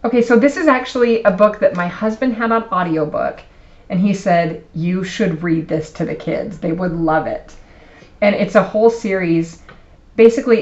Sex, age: female, 30-49